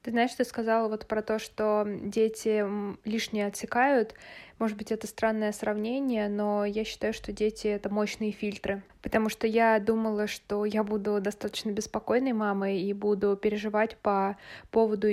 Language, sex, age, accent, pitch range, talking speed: Russian, female, 20-39, native, 200-225 Hz, 160 wpm